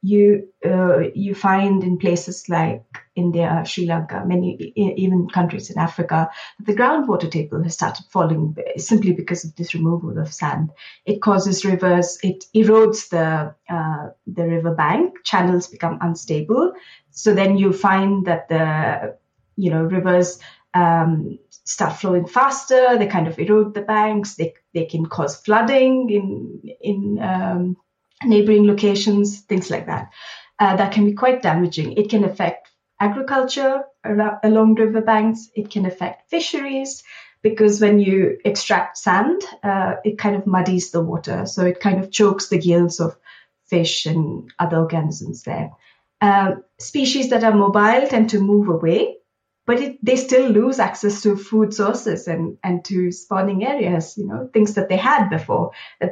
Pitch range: 175-215 Hz